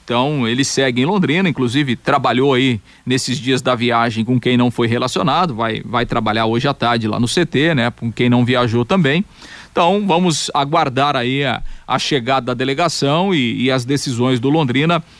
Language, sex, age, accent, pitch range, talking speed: Portuguese, male, 40-59, Brazilian, 125-150 Hz, 185 wpm